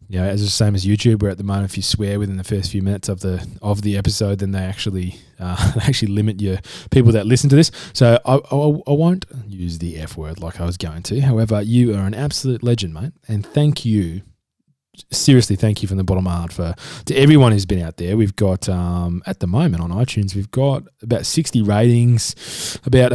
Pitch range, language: 95-120 Hz, English